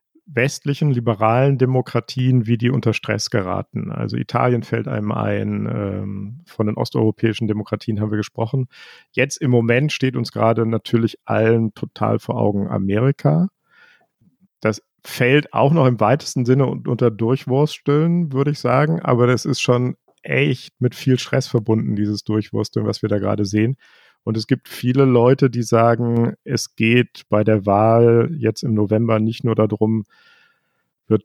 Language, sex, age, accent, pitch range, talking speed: German, male, 50-69, German, 110-130 Hz, 150 wpm